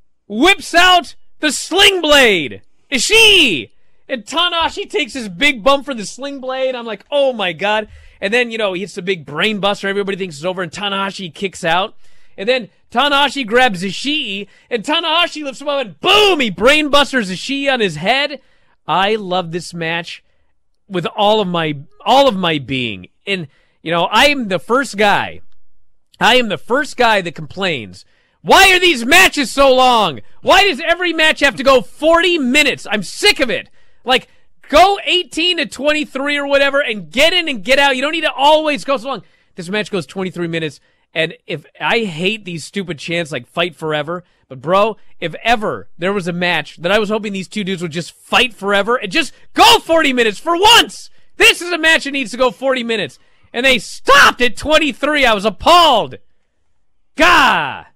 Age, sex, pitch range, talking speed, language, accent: 30-49, male, 190-290 Hz, 190 wpm, English, American